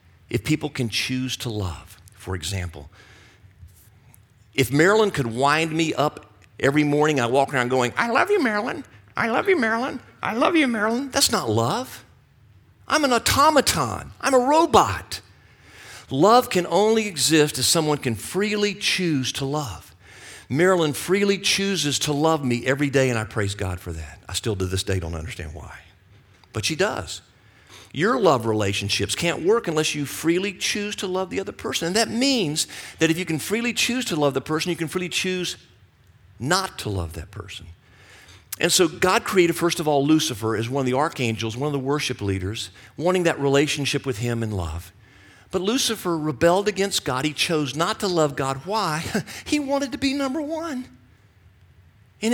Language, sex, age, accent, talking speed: English, male, 50-69, American, 180 wpm